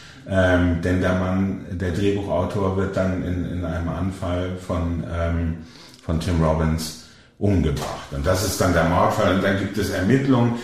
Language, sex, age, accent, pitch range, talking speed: German, male, 50-69, German, 90-105 Hz, 160 wpm